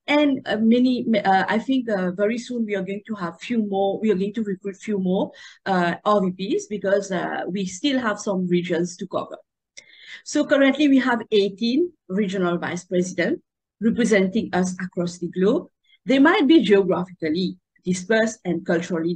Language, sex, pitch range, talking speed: English, female, 185-250 Hz, 170 wpm